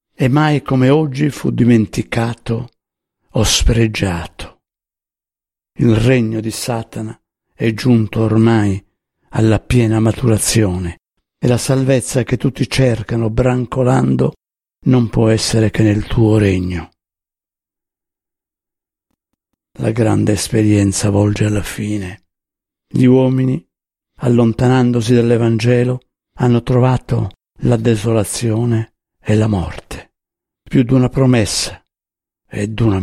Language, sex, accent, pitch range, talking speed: Italian, male, native, 105-125 Hz, 100 wpm